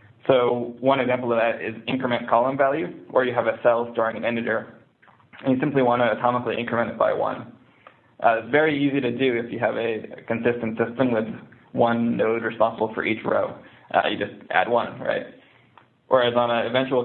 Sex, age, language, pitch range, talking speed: male, 20-39, English, 115-125 Hz, 195 wpm